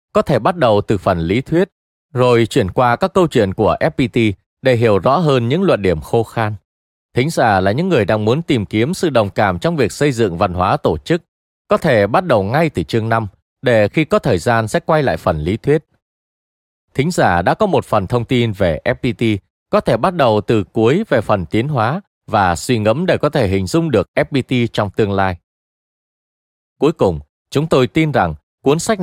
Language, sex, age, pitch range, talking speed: Vietnamese, male, 20-39, 95-145 Hz, 215 wpm